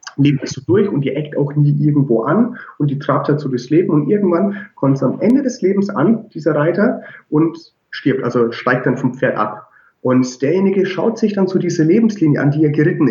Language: German